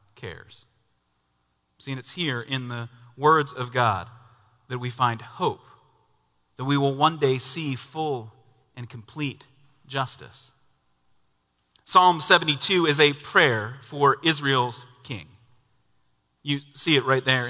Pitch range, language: 125-160 Hz, English